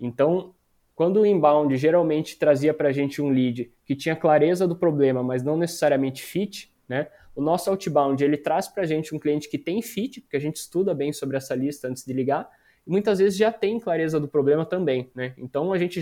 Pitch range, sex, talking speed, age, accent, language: 135-170 Hz, male, 215 wpm, 20-39, Brazilian, Portuguese